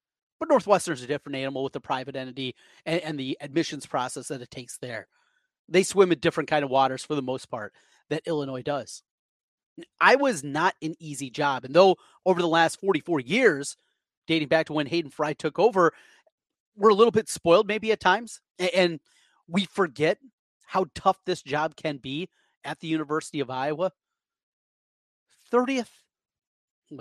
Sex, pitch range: male, 145-200 Hz